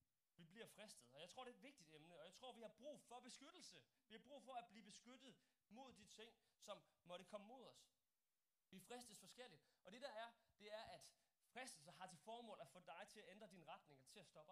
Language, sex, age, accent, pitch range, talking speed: Danish, male, 30-49, native, 175-230 Hz, 250 wpm